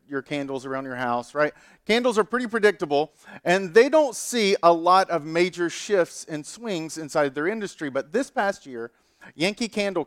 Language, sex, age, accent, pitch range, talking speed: English, male, 40-59, American, 160-205 Hz, 180 wpm